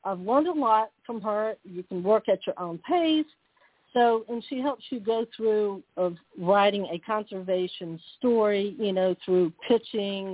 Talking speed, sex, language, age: 170 wpm, female, English, 50-69